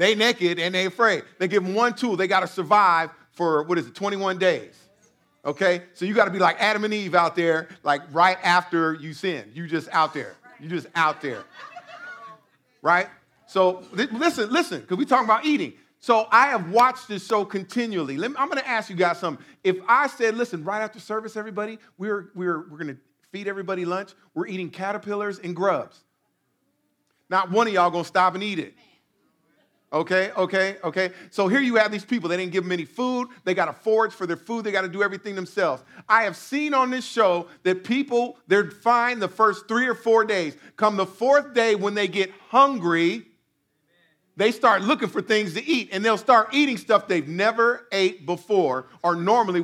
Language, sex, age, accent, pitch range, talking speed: English, male, 50-69, American, 175-225 Hz, 210 wpm